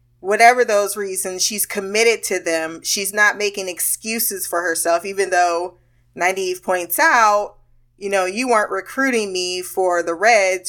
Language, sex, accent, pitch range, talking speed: English, female, American, 165-220 Hz, 150 wpm